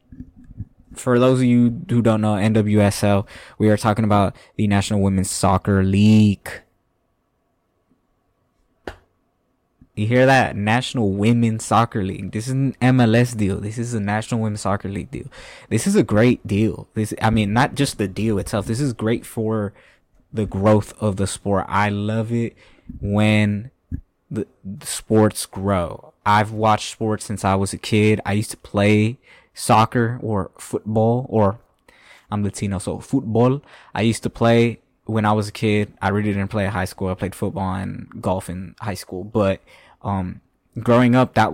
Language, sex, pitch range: English, male, 100-115 Hz